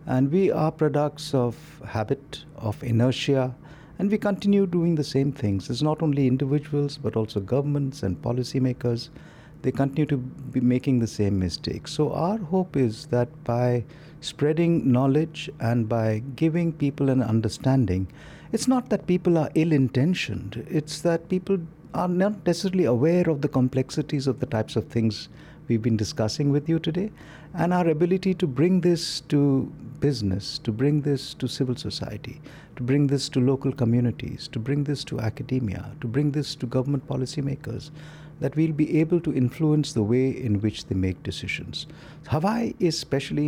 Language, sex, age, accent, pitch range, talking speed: English, male, 50-69, Indian, 125-155 Hz, 170 wpm